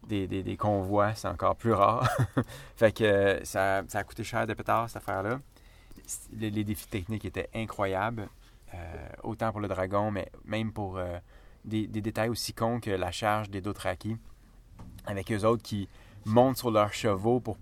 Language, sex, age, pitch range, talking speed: French, male, 30-49, 95-115 Hz, 185 wpm